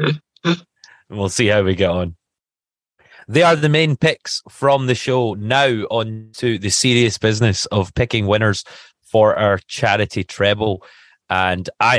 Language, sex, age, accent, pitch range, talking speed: English, male, 30-49, British, 90-120 Hz, 150 wpm